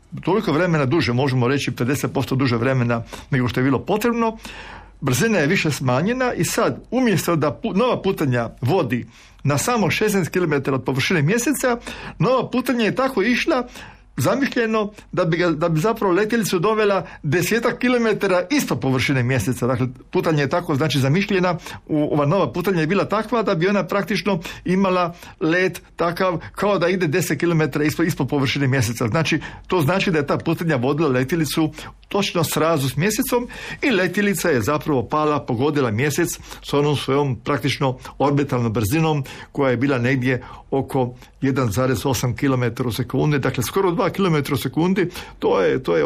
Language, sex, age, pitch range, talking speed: Croatian, male, 50-69, 135-185 Hz, 155 wpm